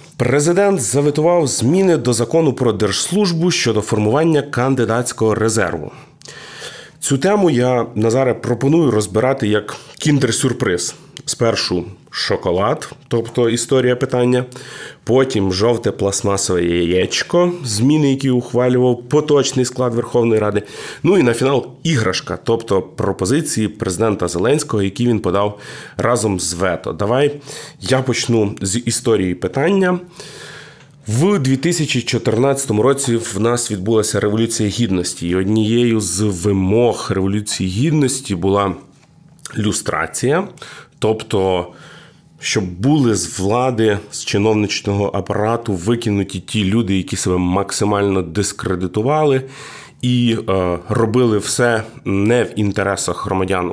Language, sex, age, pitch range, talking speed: Ukrainian, male, 30-49, 100-135 Hz, 105 wpm